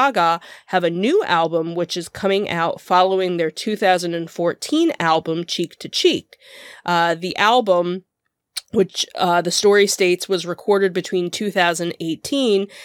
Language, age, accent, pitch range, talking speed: English, 20-39, American, 170-195 Hz, 125 wpm